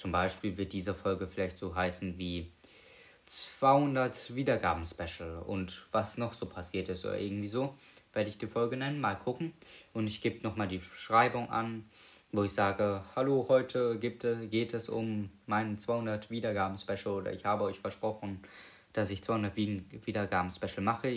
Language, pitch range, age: German, 95-125 Hz, 20-39